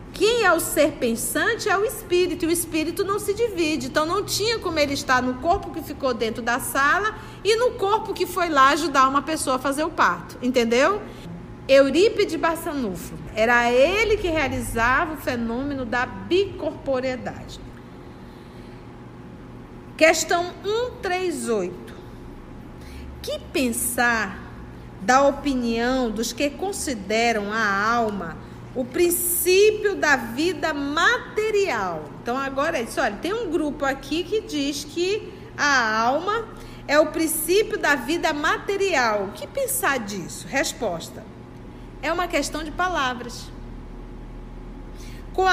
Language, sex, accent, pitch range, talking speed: Portuguese, female, Brazilian, 265-370 Hz, 130 wpm